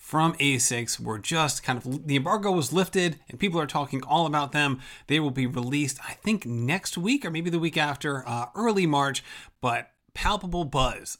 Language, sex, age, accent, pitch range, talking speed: English, male, 30-49, American, 125-155 Hz, 195 wpm